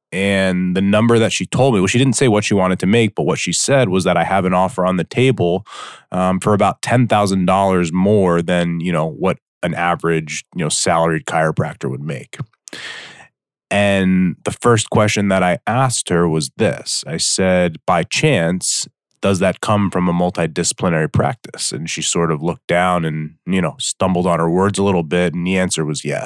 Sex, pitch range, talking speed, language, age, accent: male, 85-105 Hz, 200 wpm, English, 30-49, American